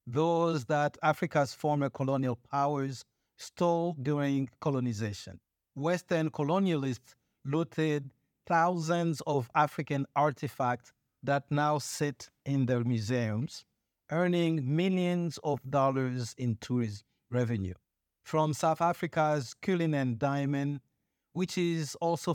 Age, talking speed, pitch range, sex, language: 50-69, 100 wpm, 125-160 Hz, male, English